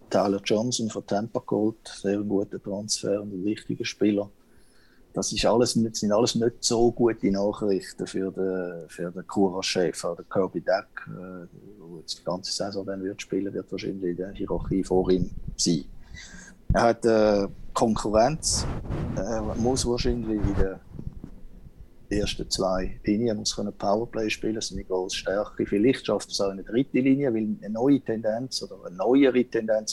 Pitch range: 95-110 Hz